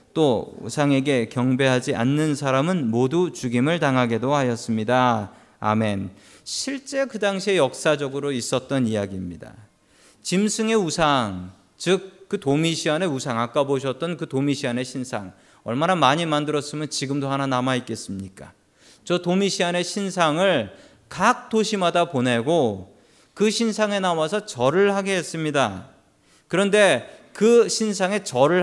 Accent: native